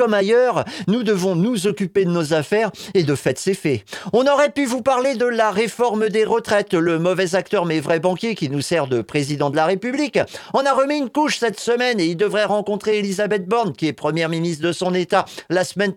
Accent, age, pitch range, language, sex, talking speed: French, 50-69, 155-235 Hz, French, male, 225 wpm